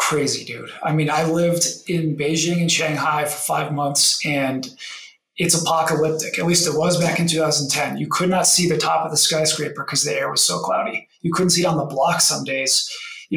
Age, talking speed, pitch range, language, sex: 20-39, 215 wpm, 155-185 Hz, English, male